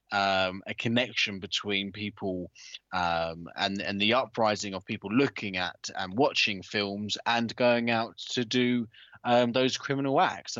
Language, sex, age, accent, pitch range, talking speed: English, male, 20-39, British, 95-125 Hz, 155 wpm